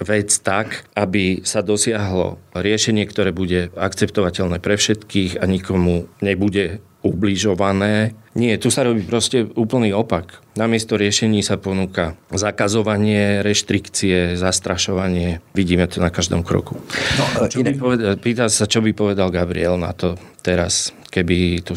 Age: 40-59